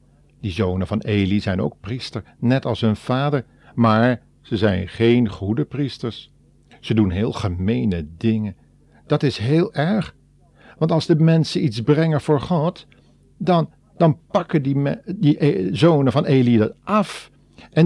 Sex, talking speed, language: male, 150 wpm, Dutch